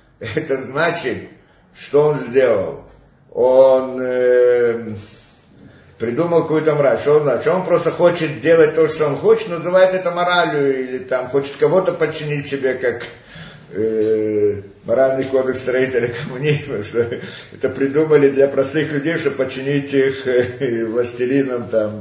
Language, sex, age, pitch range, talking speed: Russian, male, 50-69, 130-175 Hz, 120 wpm